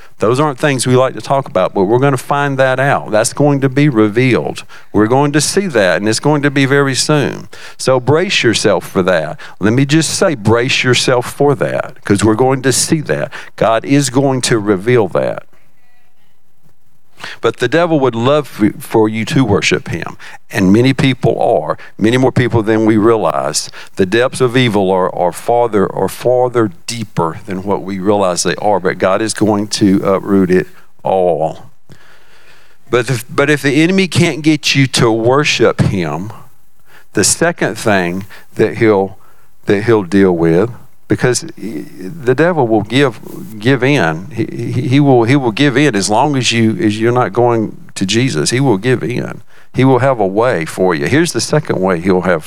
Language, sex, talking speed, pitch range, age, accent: English, male, 190 wpm, 105-140 Hz, 50-69, American